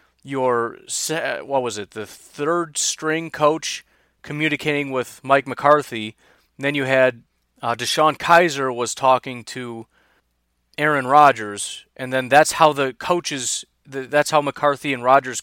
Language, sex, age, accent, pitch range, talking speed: English, male, 30-49, American, 125-155 Hz, 130 wpm